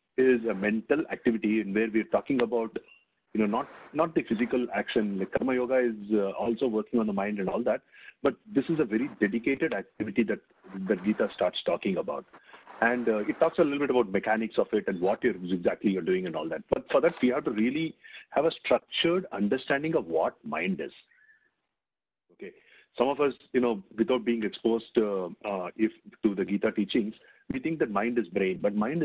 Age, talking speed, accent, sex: 40-59, 210 wpm, Indian, male